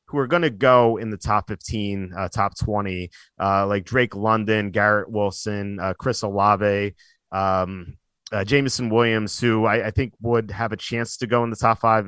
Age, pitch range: 30-49, 105-120 Hz